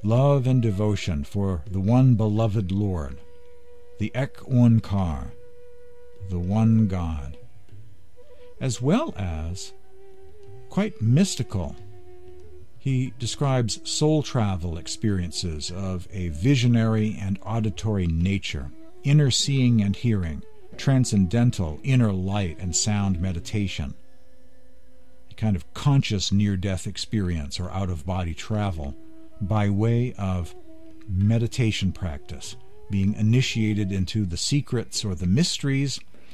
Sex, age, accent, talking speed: male, 50-69, American, 100 wpm